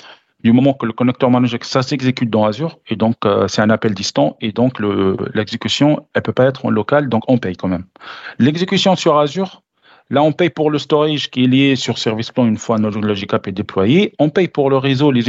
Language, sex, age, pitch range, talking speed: French, male, 40-59, 120-155 Hz, 235 wpm